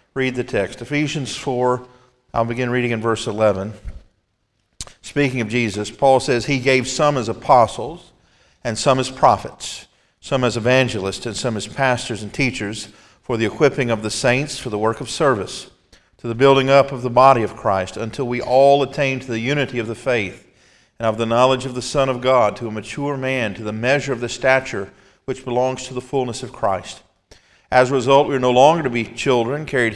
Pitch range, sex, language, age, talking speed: 110-135 Hz, male, English, 50-69, 200 wpm